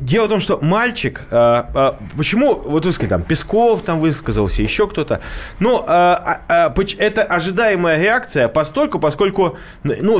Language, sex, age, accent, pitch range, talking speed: Russian, male, 20-39, native, 145-210 Hz, 120 wpm